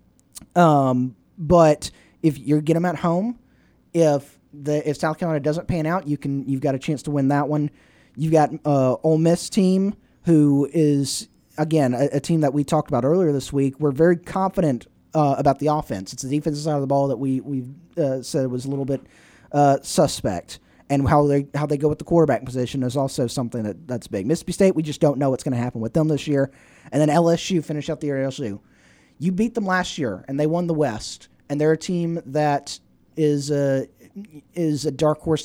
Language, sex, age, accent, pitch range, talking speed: English, male, 20-39, American, 140-170 Hz, 220 wpm